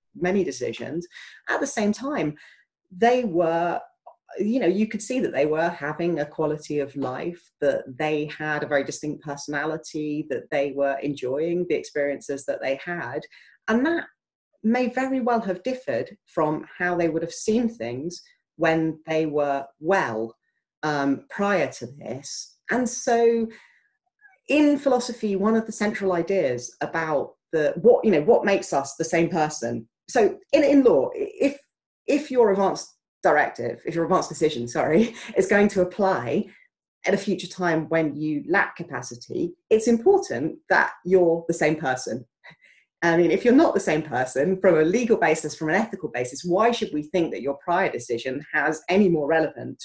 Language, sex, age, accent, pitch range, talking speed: English, female, 40-59, British, 150-225 Hz, 170 wpm